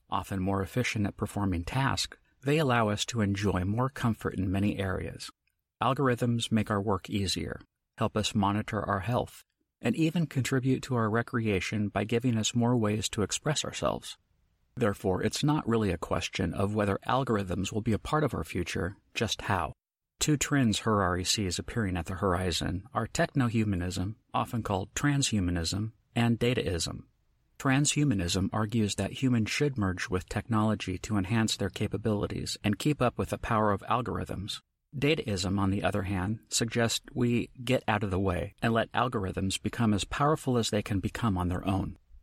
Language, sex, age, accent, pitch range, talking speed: English, male, 50-69, American, 95-120 Hz, 170 wpm